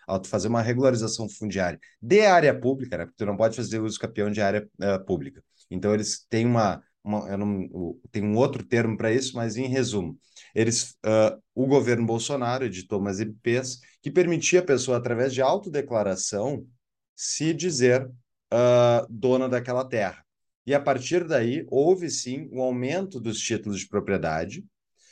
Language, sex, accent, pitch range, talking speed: Portuguese, male, Brazilian, 110-145 Hz, 165 wpm